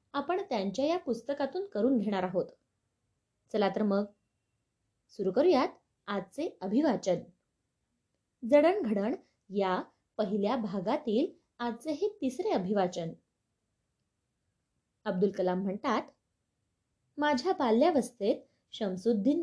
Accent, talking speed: native, 45 wpm